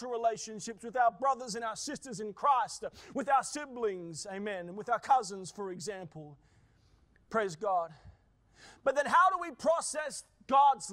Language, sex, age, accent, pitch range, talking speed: English, male, 30-49, Australian, 200-285 Hz, 155 wpm